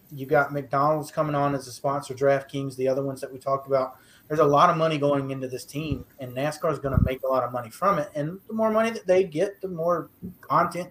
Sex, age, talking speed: male, 30-49, 260 wpm